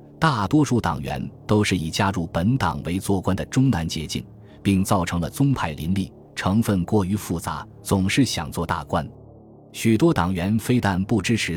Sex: male